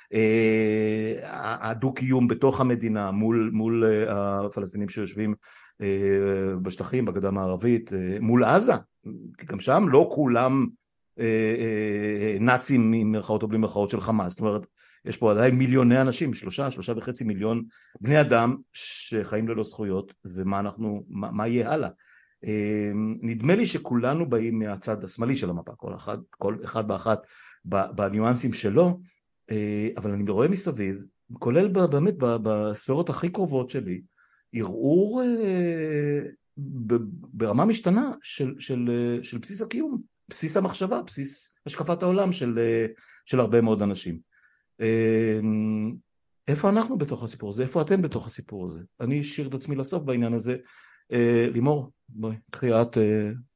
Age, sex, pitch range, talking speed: 60-79, male, 105-135 Hz, 130 wpm